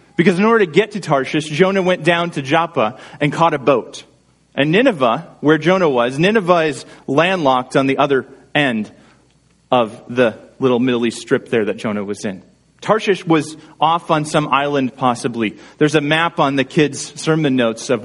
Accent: American